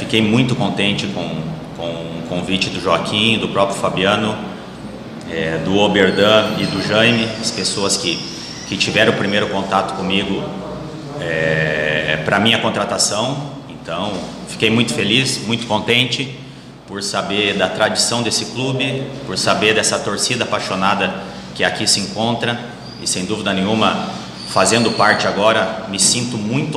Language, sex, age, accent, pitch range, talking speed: Portuguese, male, 30-49, Brazilian, 95-115 Hz, 135 wpm